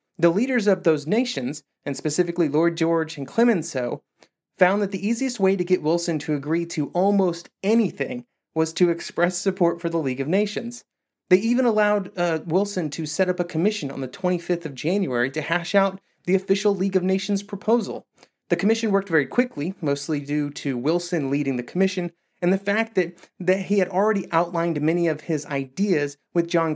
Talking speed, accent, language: 190 wpm, American, English